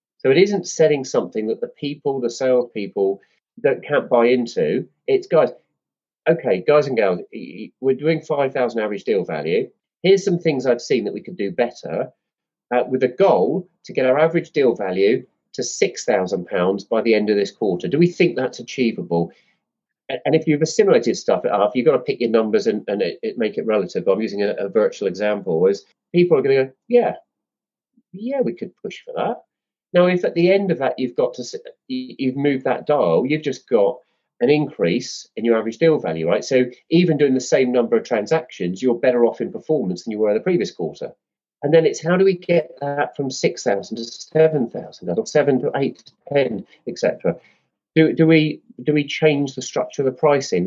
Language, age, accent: English, 40-59, British